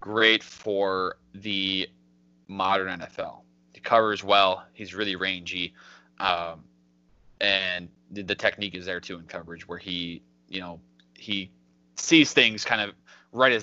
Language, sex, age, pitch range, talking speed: English, male, 20-39, 85-105 Hz, 140 wpm